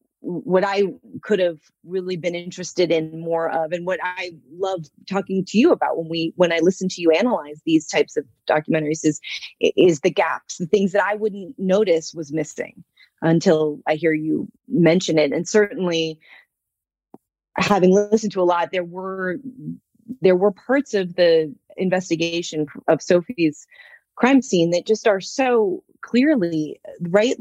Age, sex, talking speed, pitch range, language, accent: 30-49, female, 160 wpm, 175-225 Hz, English, American